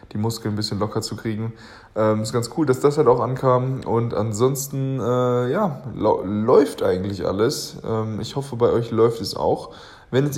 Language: German